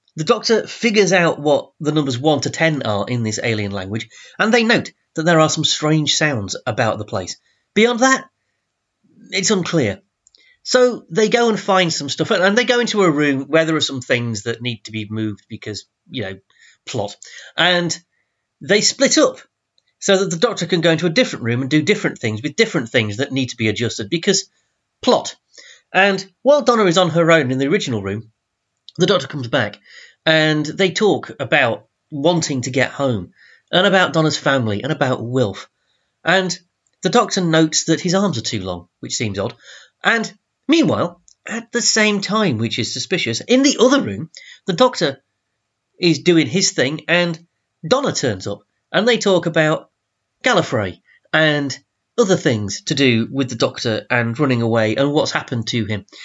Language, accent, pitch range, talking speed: English, British, 120-195 Hz, 185 wpm